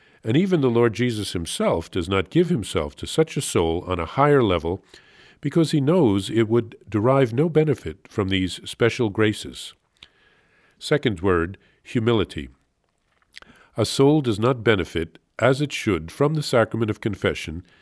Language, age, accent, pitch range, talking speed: English, 50-69, American, 95-140 Hz, 155 wpm